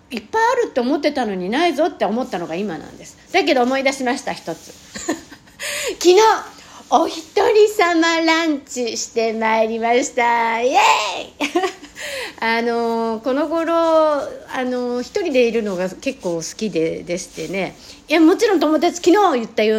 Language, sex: Japanese, female